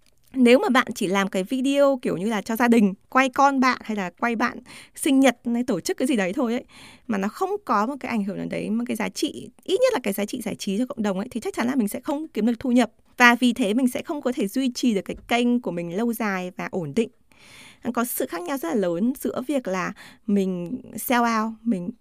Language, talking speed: Vietnamese, 275 wpm